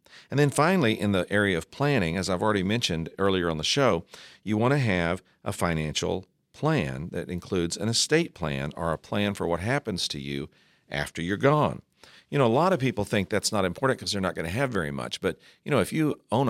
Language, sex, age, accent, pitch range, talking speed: English, male, 50-69, American, 85-130 Hz, 230 wpm